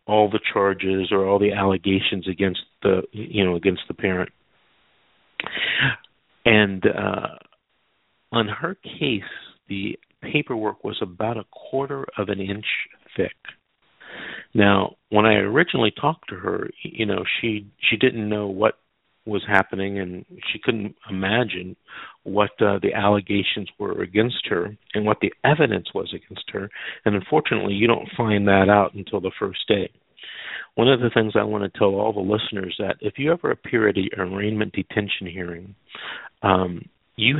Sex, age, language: male, 50-69, English